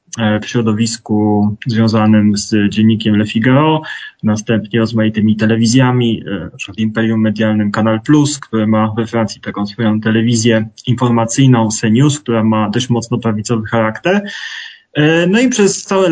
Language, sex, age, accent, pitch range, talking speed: Polish, male, 20-39, native, 110-130 Hz, 125 wpm